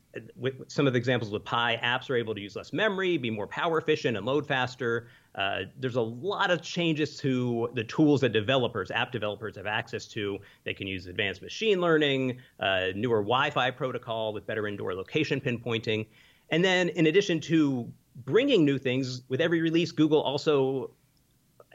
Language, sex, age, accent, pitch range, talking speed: English, male, 30-49, American, 110-145 Hz, 180 wpm